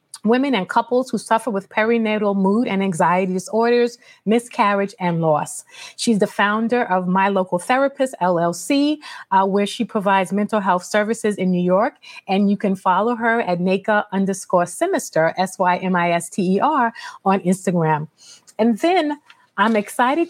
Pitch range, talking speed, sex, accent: 185-230 Hz, 140 wpm, female, American